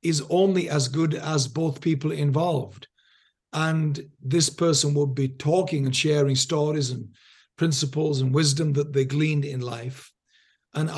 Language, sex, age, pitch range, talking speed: English, male, 50-69, 135-165 Hz, 150 wpm